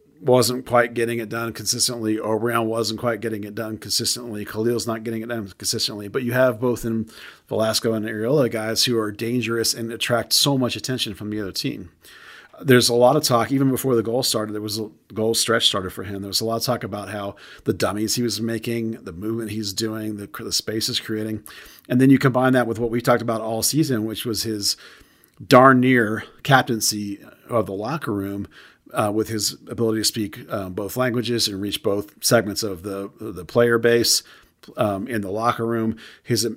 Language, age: English, 40-59